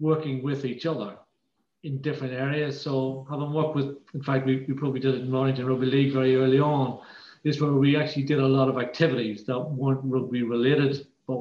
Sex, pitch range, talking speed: male, 130-150 Hz, 205 wpm